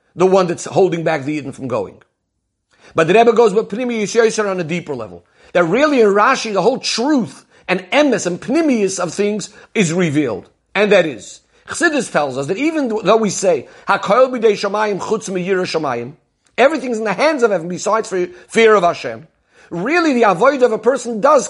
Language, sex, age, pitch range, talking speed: English, male, 50-69, 175-230 Hz, 180 wpm